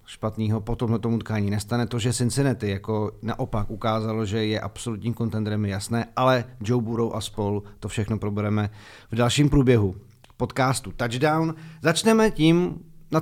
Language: Czech